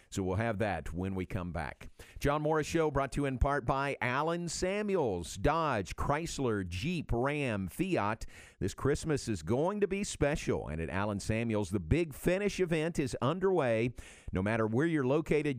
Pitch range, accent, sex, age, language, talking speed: 105-145 Hz, American, male, 50-69, English, 175 wpm